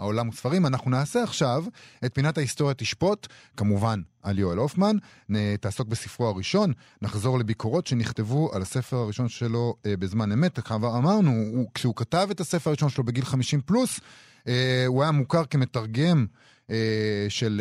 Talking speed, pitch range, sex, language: 155 wpm, 115-155 Hz, male, Hebrew